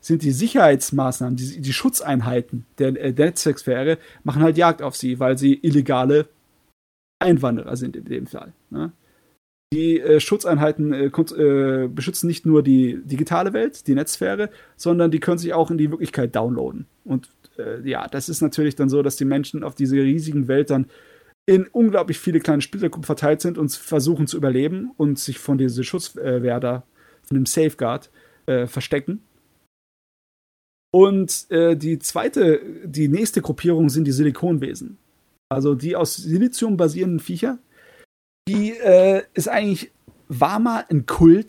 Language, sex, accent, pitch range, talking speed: German, male, German, 135-170 Hz, 150 wpm